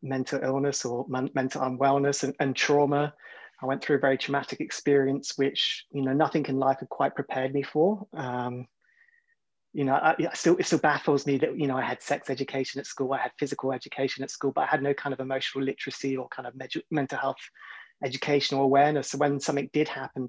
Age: 30-49